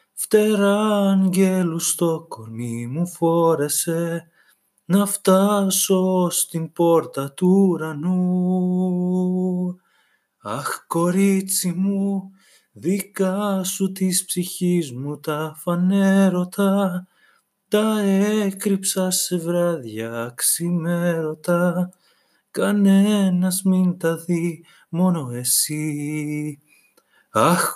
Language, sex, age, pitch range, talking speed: Greek, male, 30-49, 170-205 Hz, 70 wpm